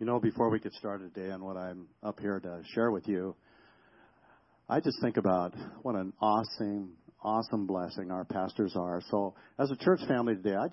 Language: English